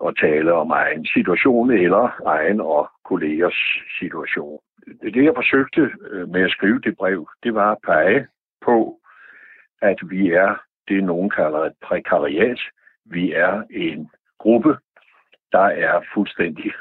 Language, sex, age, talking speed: Danish, male, 60-79, 135 wpm